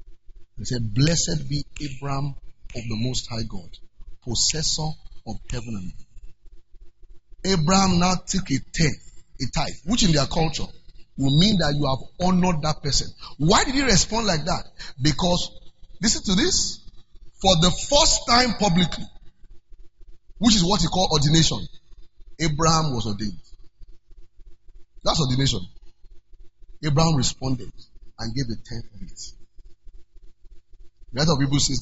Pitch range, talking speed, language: 110-165 Hz, 135 wpm, English